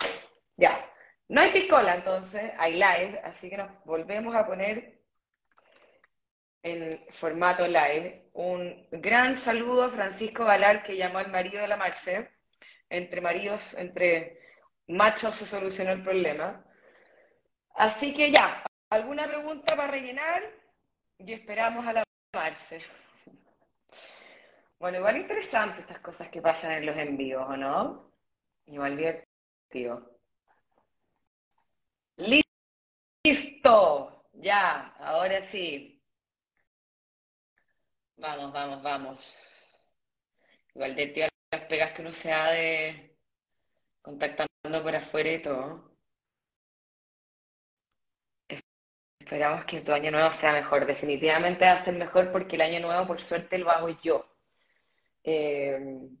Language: Spanish